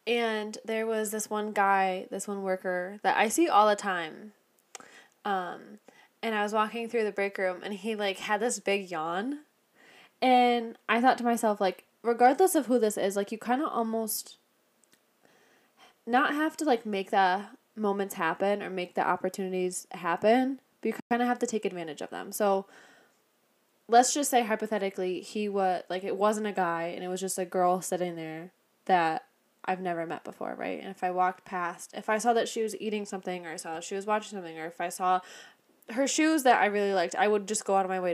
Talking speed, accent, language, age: 210 wpm, American, English, 10-29